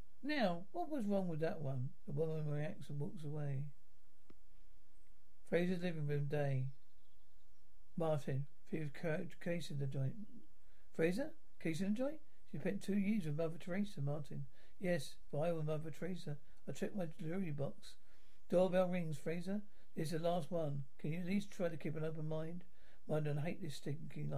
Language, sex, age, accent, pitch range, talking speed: English, male, 60-79, British, 150-185 Hz, 170 wpm